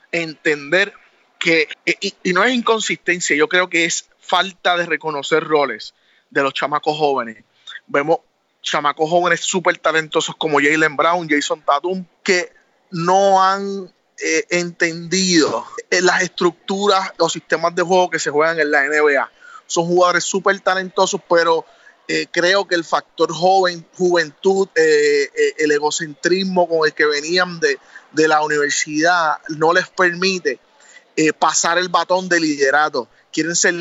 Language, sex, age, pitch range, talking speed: Spanish, male, 30-49, 155-190 Hz, 145 wpm